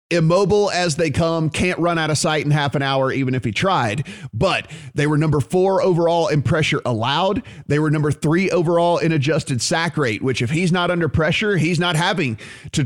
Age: 30-49